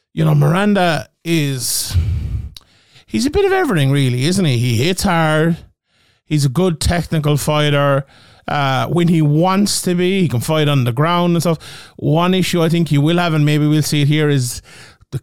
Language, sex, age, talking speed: English, male, 30-49, 195 wpm